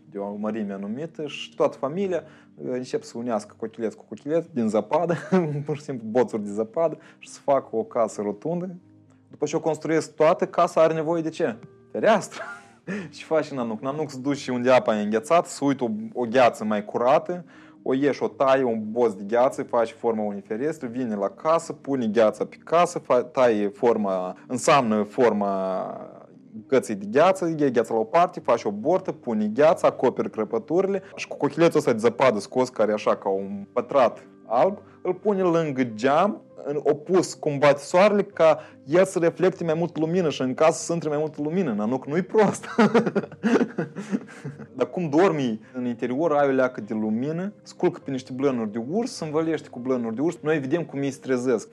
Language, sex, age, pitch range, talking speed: Romanian, male, 20-39, 120-170 Hz, 180 wpm